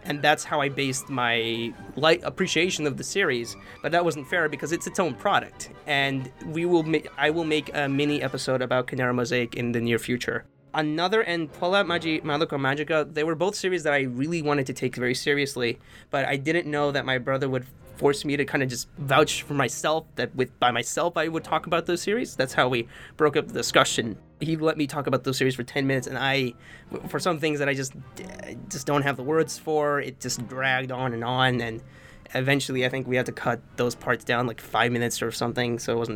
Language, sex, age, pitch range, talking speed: English, male, 20-39, 125-155 Hz, 225 wpm